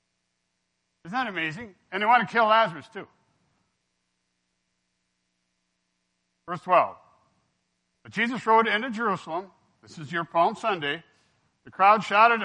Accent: American